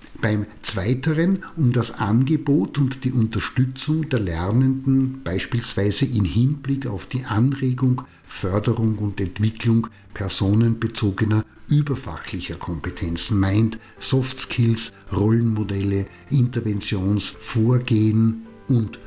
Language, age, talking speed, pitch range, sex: German, 50-69, 90 wpm, 105-135 Hz, male